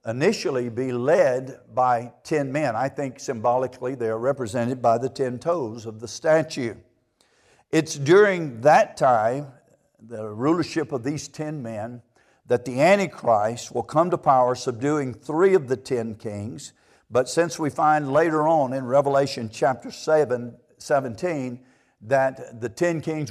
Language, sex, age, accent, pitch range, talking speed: English, male, 60-79, American, 120-150 Hz, 145 wpm